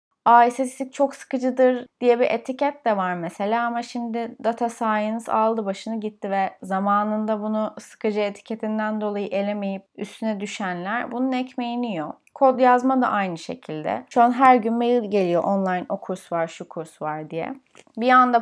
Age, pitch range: 30-49, 195-230 Hz